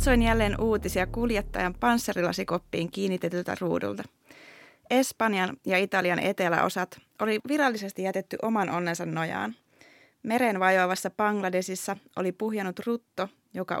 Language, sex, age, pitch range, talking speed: Finnish, female, 20-39, 180-225 Hz, 100 wpm